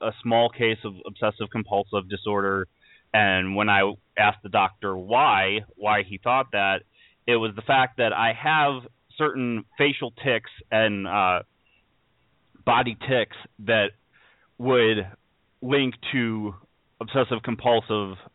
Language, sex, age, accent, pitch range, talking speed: English, male, 30-49, American, 100-120 Hz, 125 wpm